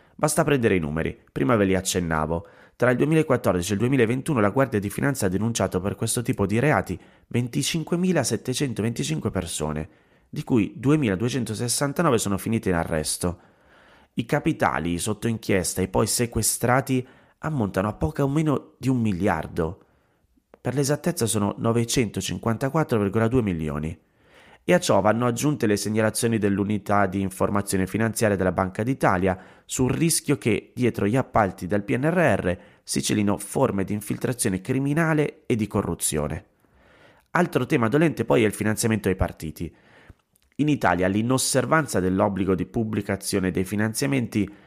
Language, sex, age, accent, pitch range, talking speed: Italian, male, 30-49, native, 95-125 Hz, 135 wpm